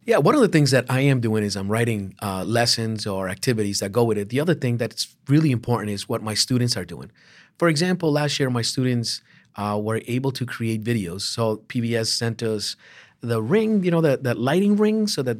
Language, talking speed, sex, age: English, 220 wpm, male, 40-59